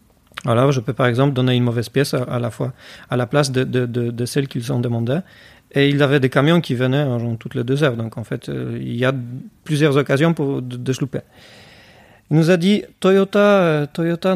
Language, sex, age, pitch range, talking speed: French, male, 40-59, 130-160 Hz, 250 wpm